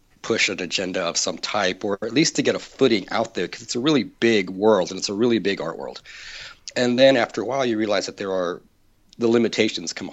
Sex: male